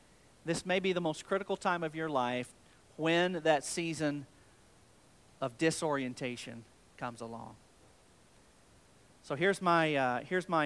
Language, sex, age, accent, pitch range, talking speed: English, male, 40-59, American, 130-180 Hz, 130 wpm